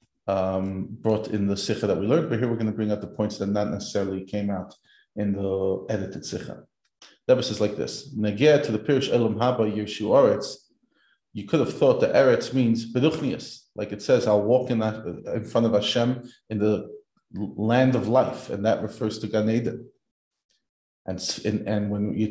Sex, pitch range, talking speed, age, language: male, 110-130 Hz, 195 wpm, 30-49, English